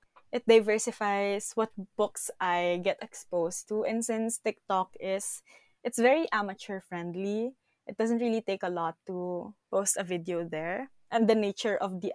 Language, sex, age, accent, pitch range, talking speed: English, female, 20-39, Filipino, 180-220 Hz, 155 wpm